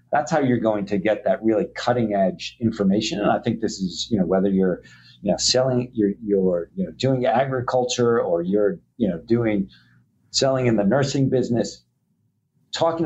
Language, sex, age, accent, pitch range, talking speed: English, male, 50-69, American, 100-125 Hz, 185 wpm